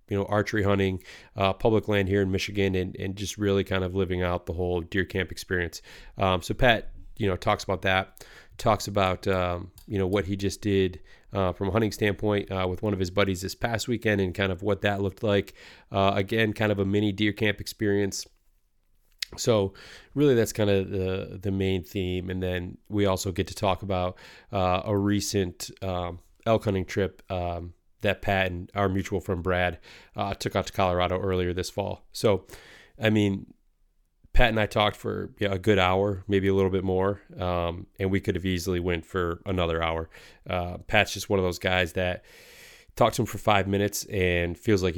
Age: 30-49